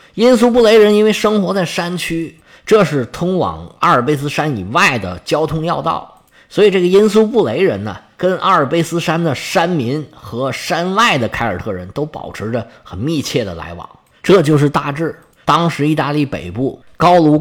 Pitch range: 120-175 Hz